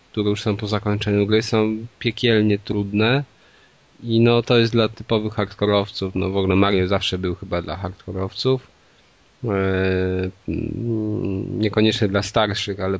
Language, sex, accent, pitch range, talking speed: Polish, male, native, 95-115 Hz, 140 wpm